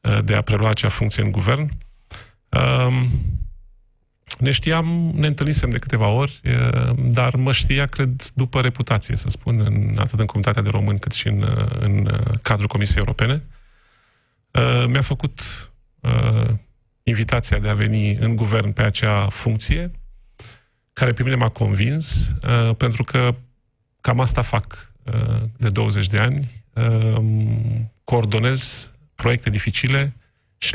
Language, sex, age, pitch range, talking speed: Romanian, male, 30-49, 110-125 Hz, 125 wpm